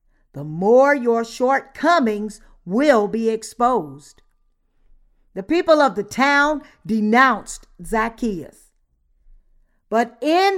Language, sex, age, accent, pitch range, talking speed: English, female, 50-69, American, 220-310 Hz, 90 wpm